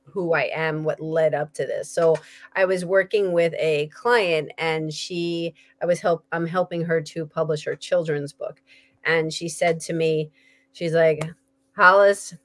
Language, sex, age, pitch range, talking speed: English, female, 30-49, 160-245 Hz, 175 wpm